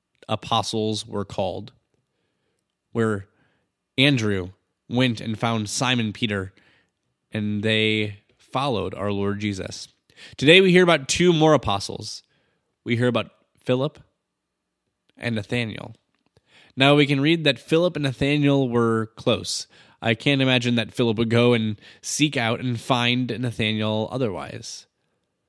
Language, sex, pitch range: English, male, 110-135 Hz